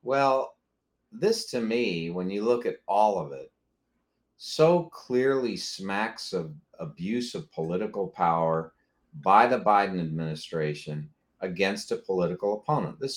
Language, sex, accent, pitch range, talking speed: English, male, American, 95-135 Hz, 130 wpm